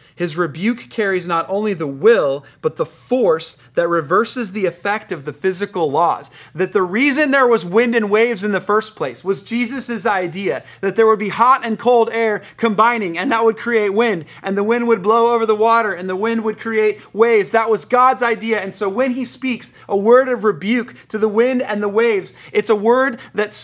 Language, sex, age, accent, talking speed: English, male, 30-49, American, 215 wpm